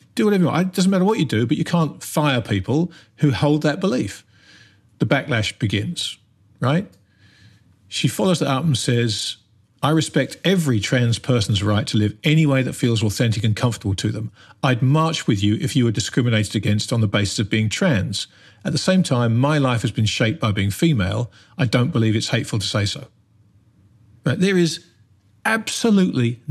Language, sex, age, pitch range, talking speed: English, male, 40-59, 110-150 Hz, 190 wpm